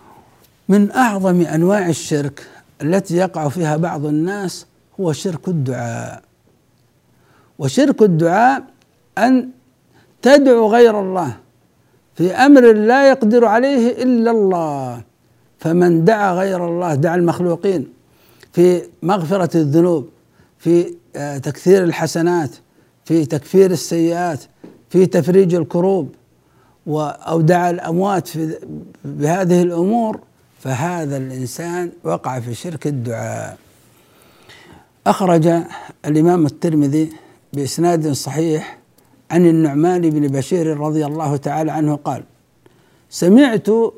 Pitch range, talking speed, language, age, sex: 155-205 Hz, 95 wpm, Arabic, 60-79, male